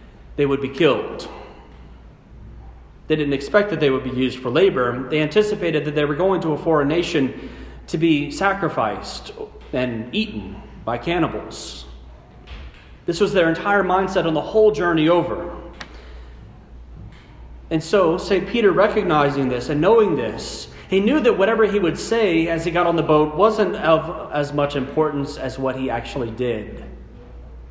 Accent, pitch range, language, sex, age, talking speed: American, 105-170 Hz, English, male, 30-49, 160 wpm